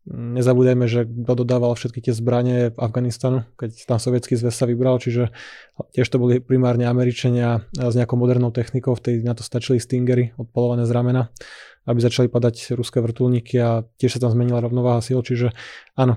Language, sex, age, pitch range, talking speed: Slovak, male, 20-39, 120-130 Hz, 175 wpm